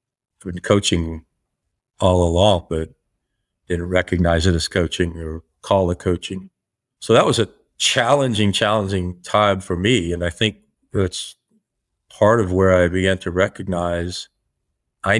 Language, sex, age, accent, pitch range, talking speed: English, male, 50-69, American, 90-105 Hz, 140 wpm